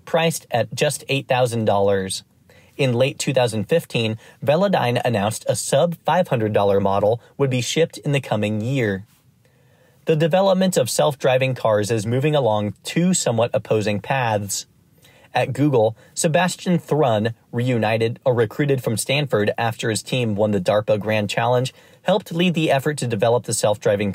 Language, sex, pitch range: English, male, 115-155 Hz